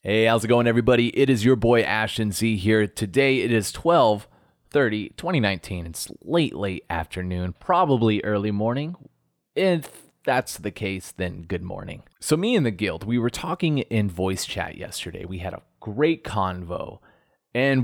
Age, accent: 30-49, American